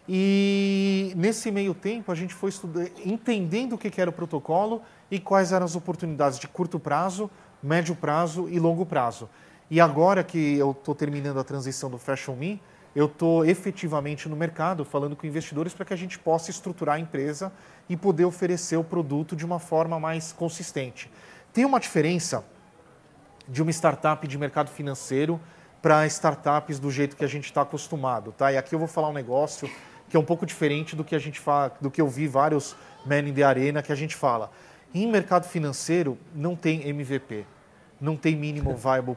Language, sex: Portuguese, male